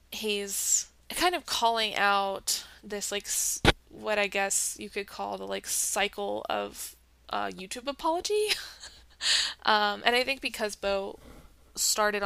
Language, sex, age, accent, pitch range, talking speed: English, female, 20-39, American, 195-245 Hz, 130 wpm